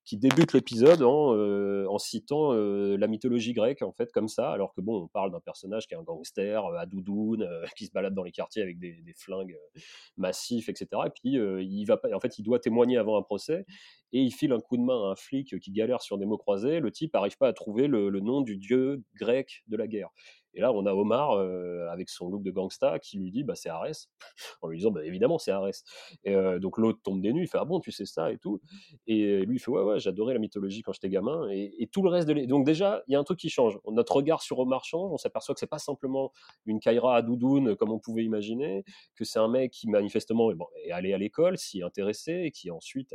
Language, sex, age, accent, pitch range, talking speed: French, male, 30-49, French, 100-135 Hz, 260 wpm